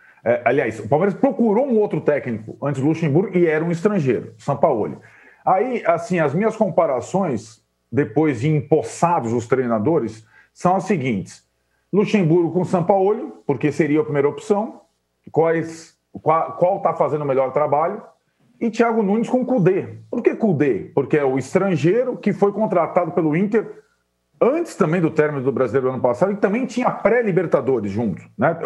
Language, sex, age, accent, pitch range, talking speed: Portuguese, male, 40-59, Brazilian, 145-200 Hz, 155 wpm